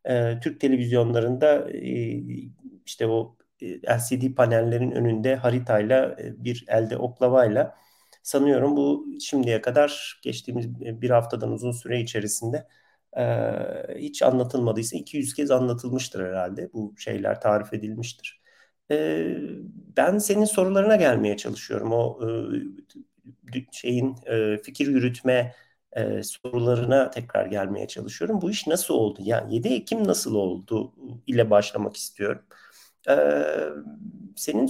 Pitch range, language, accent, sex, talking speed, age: 115-155 Hz, Turkish, native, male, 100 wpm, 50-69